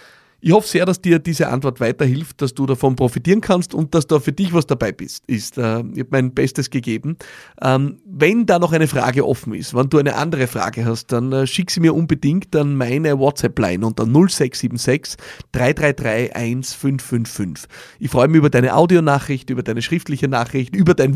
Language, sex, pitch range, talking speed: German, male, 120-140 Hz, 175 wpm